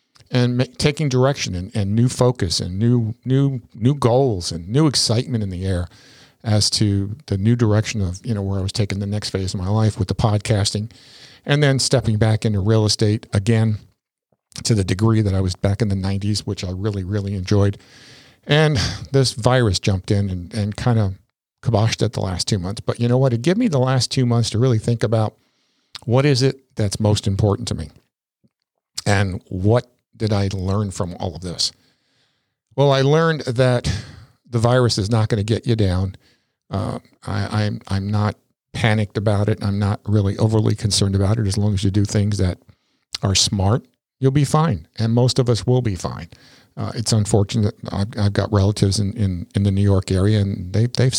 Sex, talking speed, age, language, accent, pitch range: male, 205 wpm, 50-69, English, American, 100-120 Hz